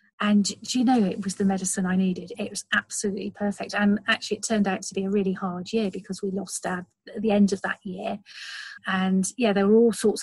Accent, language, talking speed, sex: British, English, 235 wpm, female